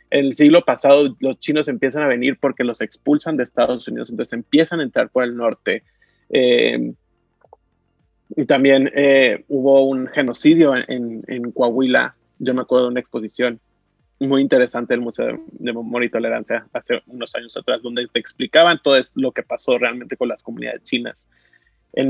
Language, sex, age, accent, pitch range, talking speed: Spanish, male, 30-49, Mexican, 130-185 Hz, 175 wpm